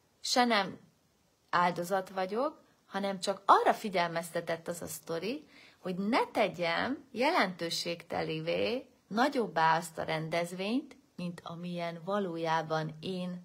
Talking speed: 105 wpm